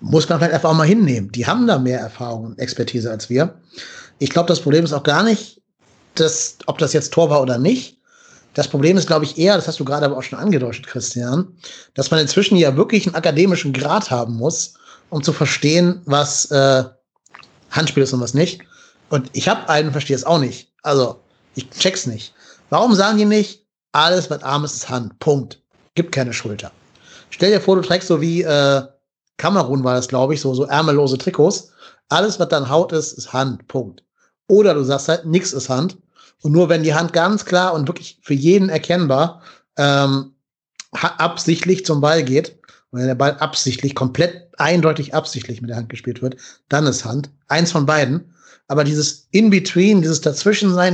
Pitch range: 135-175 Hz